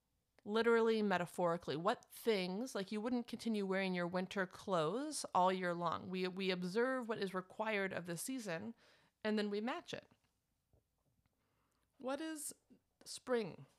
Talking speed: 140 wpm